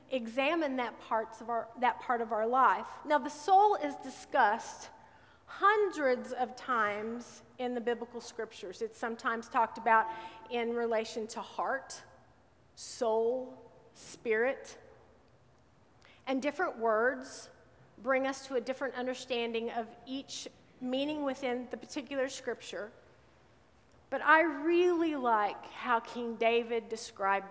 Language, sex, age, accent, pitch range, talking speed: English, female, 40-59, American, 225-270 Hz, 120 wpm